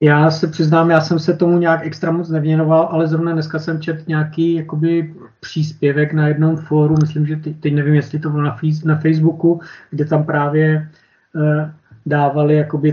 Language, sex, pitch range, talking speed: Czech, male, 140-155 Hz, 185 wpm